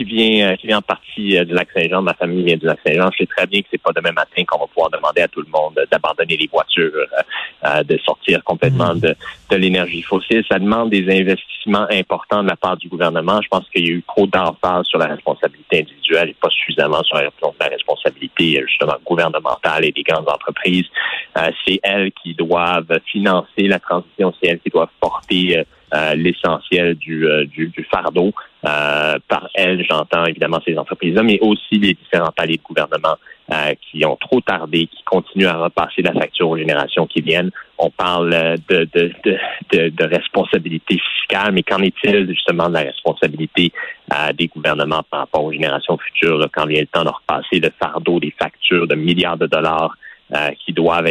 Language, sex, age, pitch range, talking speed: French, male, 30-49, 80-100 Hz, 200 wpm